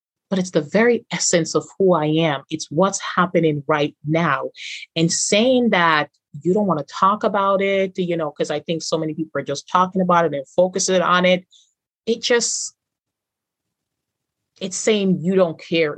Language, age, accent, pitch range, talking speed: English, 30-49, American, 150-195 Hz, 180 wpm